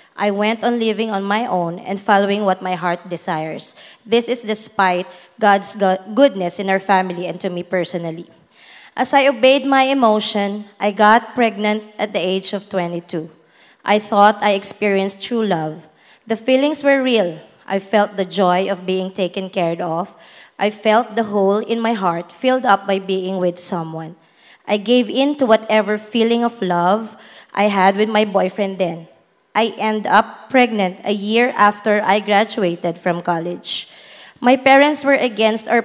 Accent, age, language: Filipino, 20-39, English